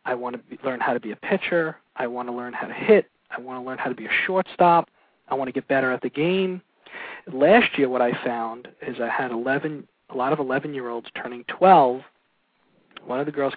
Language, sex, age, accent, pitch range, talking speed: English, male, 40-59, American, 130-175 Hz, 235 wpm